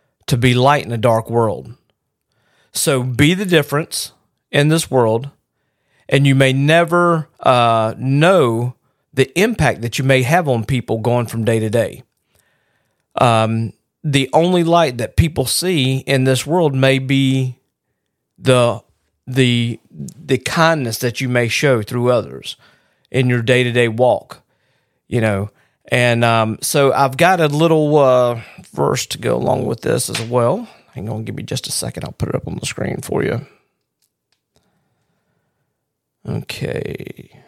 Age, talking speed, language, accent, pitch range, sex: 40-59, 150 wpm, English, American, 115-140 Hz, male